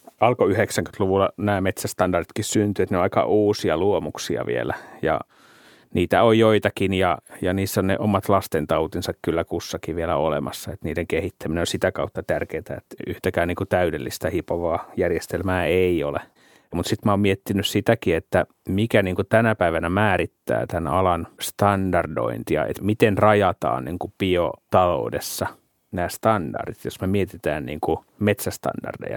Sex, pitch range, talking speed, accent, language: male, 90-105 Hz, 150 wpm, native, Finnish